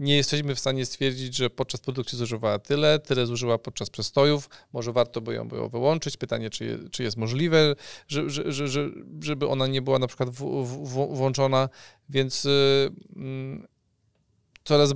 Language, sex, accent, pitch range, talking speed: Polish, male, native, 125-150 Hz, 175 wpm